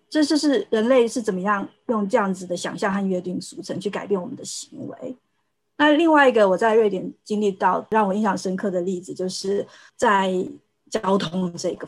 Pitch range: 190-245 Hz